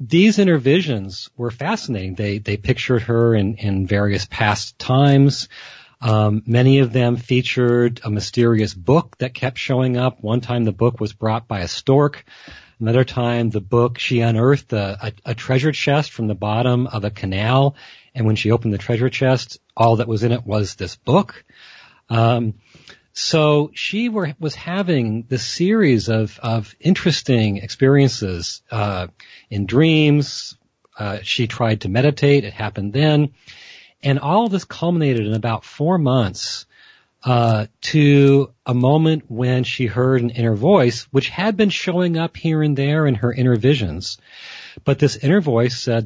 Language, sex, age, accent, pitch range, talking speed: English, male, 40-59, American, 110-140 Hz, 165 wpm